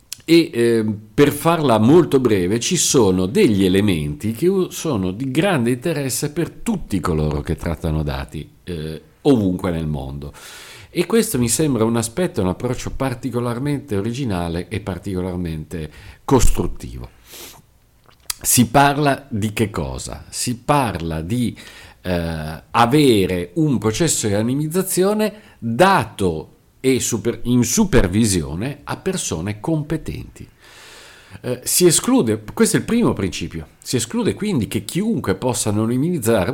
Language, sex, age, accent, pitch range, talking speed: Italian, male, 50-69, native, 90-145 Hz, 125 wpm